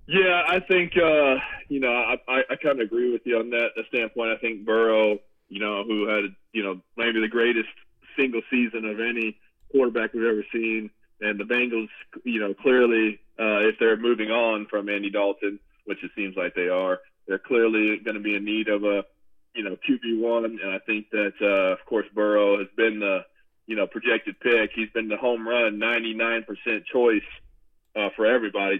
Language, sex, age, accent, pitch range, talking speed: English, male, 20-39, American, 105-130 Hz, 200 wpm